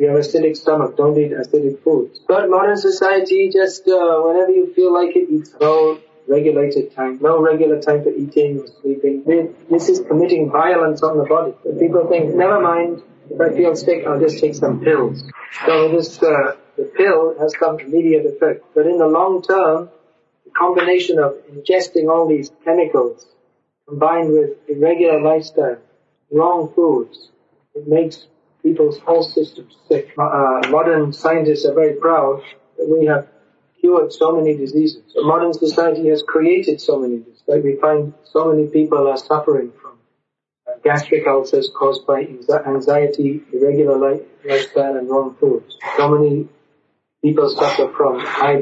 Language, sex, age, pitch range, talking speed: English, male, 40-59, 150-180 Hz, 160 wpm